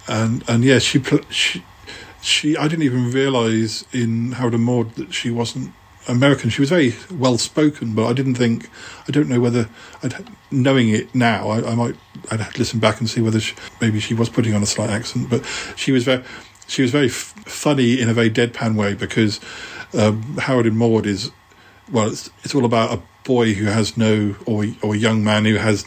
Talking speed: 215 wpm